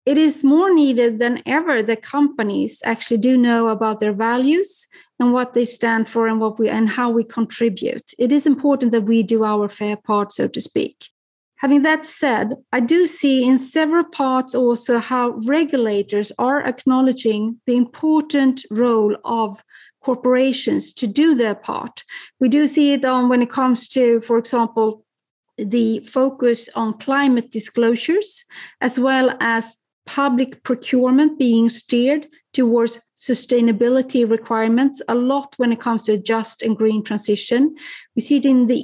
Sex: female